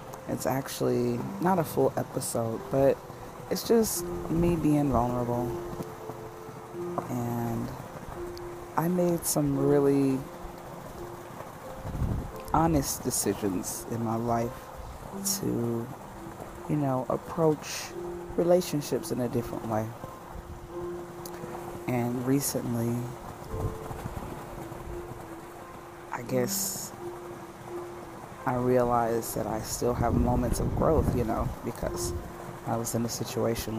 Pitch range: 115-135 Hz